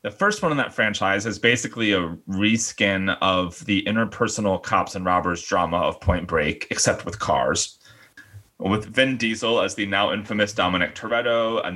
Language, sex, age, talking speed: English, male, 30-49, 170 wpm